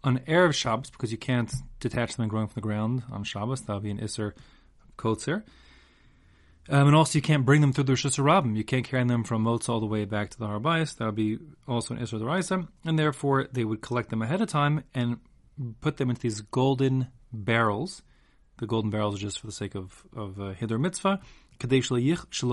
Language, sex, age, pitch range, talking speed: English, male, 30-49, 105-130 Hz, 220 wpm